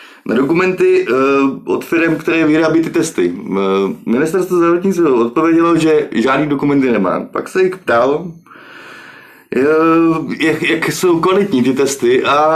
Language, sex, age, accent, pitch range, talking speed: Czech, male, 20-39, native, 145-200 Hz, 120 wpm